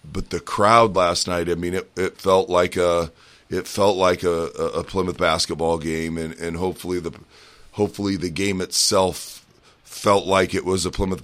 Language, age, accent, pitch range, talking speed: English, 30-49, American, 85-95 Hz, 180 wpm